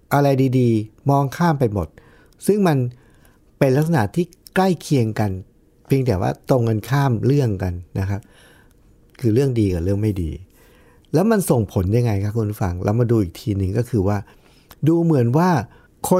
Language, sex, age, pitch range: Thai, male, 60-79, 100-140 Hz